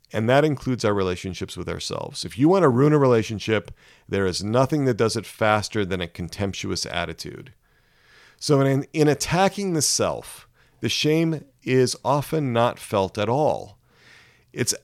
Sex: male